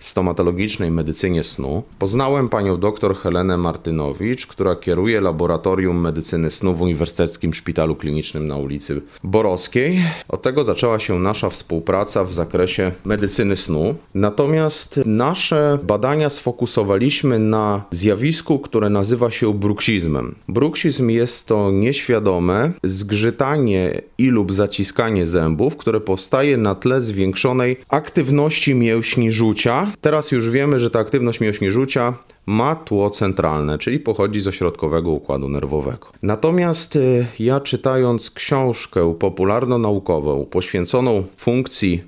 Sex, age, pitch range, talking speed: male, 30-49, 95-140 Hz, 115 wpm